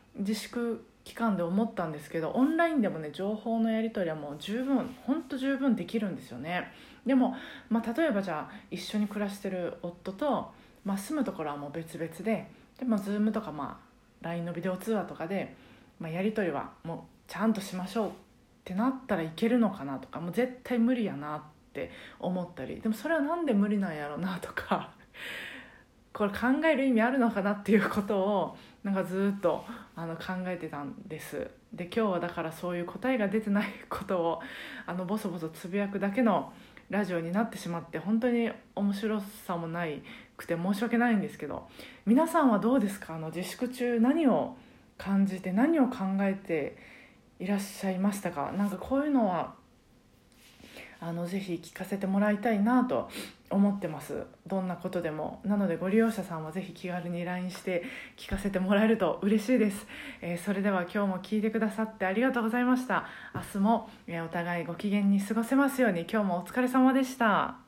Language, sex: Japanese, female